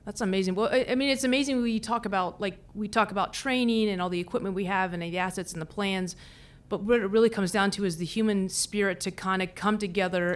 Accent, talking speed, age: American, 250 wpm, 30-49